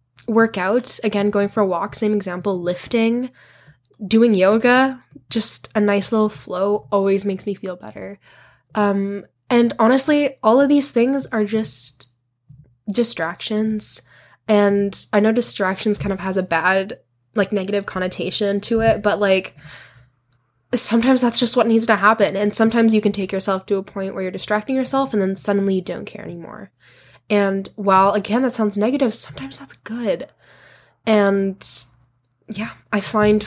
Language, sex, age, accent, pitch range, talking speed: English, female, 10-29, American, 185-230 Hz, 155 wpm